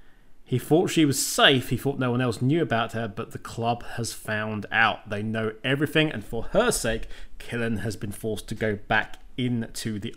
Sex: male